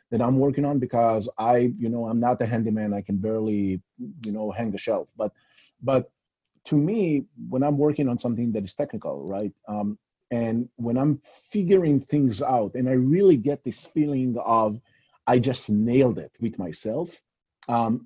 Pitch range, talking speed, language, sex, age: 110-140 Hz, 180 wpm, English, male, 30-49